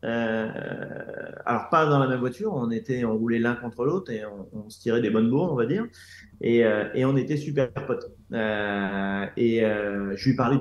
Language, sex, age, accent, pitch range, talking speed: French, male, 30-49, French, 105-130 Hz, 215 wpm